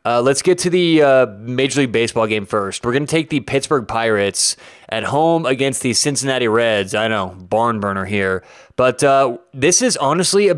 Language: English